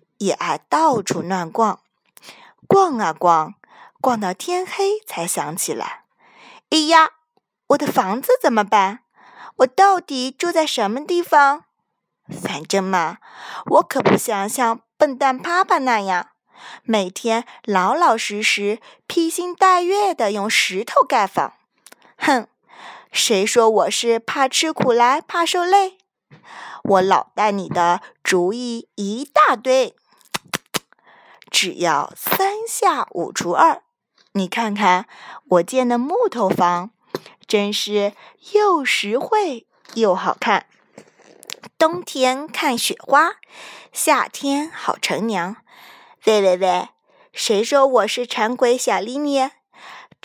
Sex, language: female, Chinese